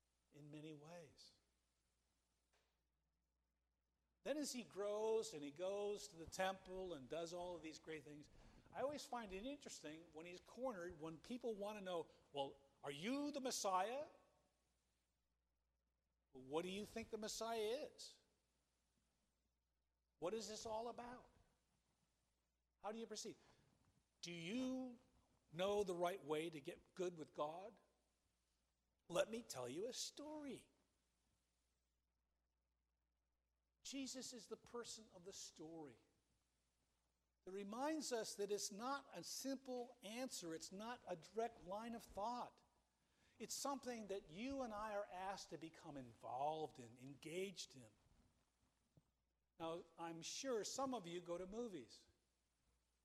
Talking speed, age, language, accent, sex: 130 wpm, 50-69, English, American, male